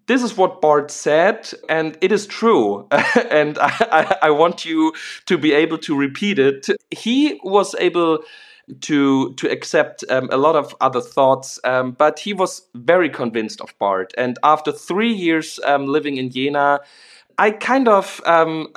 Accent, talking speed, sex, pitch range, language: German, 165 wpm, male, 135-185 Hz, English